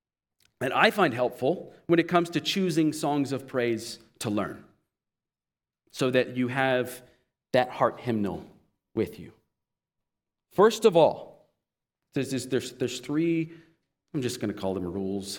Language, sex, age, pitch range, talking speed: English, male, 40-59, 145-245 Hz, 150 wpm